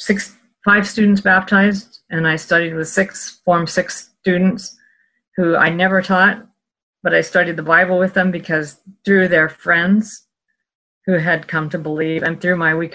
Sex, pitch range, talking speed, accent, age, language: female, 160-200 Hz, 165 wpm, American, 50-69, English